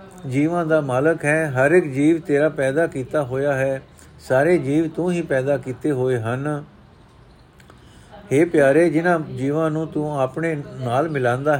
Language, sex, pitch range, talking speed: Punjabi, male, 130-160 Hz, 150 wpm